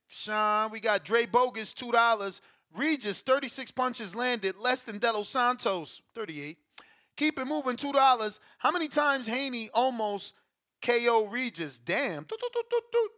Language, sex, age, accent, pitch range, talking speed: English, male, 30-49, American, 190-255 Hz, 130 wpm